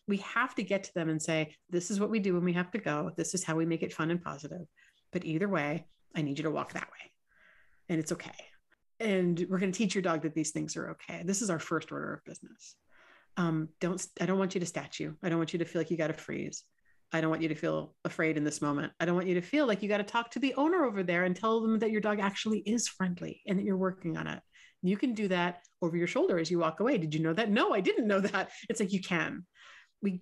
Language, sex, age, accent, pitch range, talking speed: English, female, 40-59, American, 160-205 Hz, 285 wpm